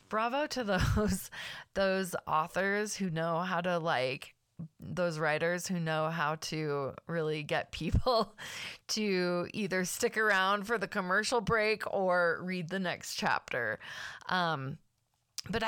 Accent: American